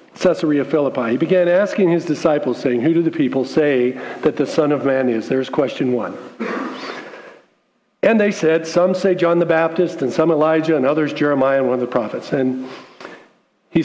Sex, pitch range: male, 140-175 Hz